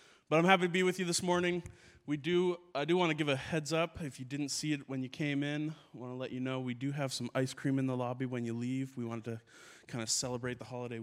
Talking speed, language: 295 wpm, English